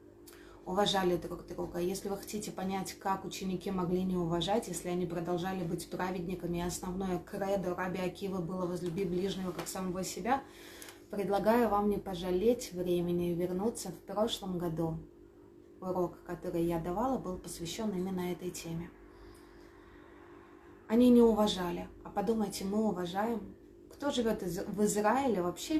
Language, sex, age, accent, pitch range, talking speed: Russian, female, 20-39, native, 185-250 Hz, 135 wpm